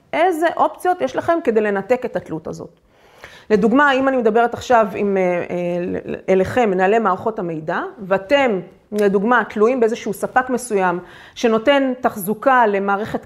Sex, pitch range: female, 205-270 Hz